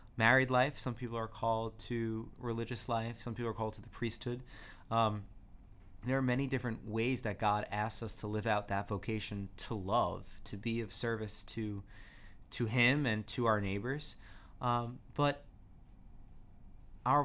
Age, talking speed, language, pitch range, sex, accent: 30-49, 165 wpm, English, 110-135 Hz, male, American